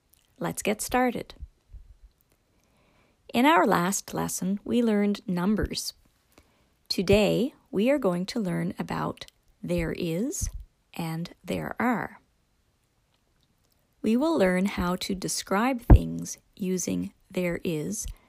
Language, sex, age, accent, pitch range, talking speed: English, female, 40-59, American, 170-215 Hz, 105 wpm